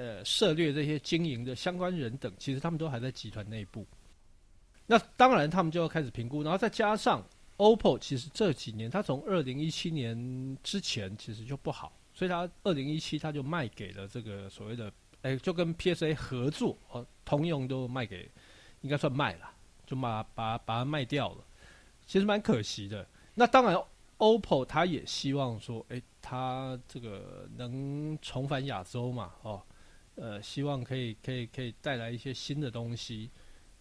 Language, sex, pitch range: Chinese, male, 115-160 Hz